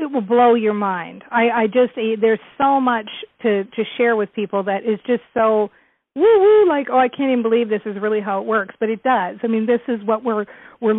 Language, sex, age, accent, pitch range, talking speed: English, female, 40-59, American, 205-245 Hz, 235 wpm